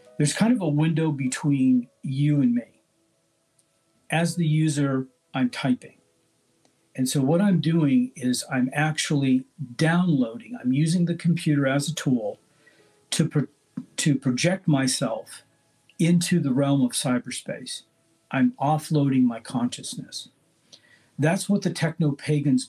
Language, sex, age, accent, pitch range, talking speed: Filipino, male, 50-69, American, 130-160 Hz, 125 wpm